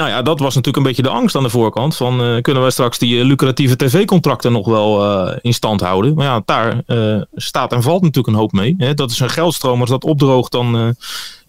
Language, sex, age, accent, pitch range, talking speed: Dutch, male, 30-49, Dutch, 125-160 Hz, 250 wpm